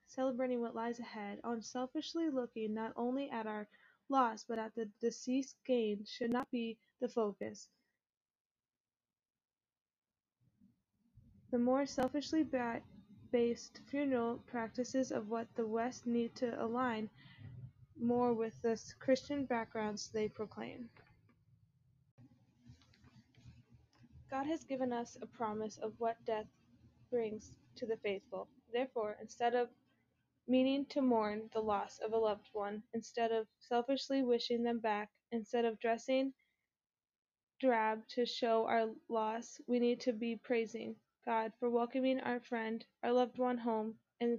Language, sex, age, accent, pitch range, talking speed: English, female, 10-29, American, 220-250 Hz, 130 wpm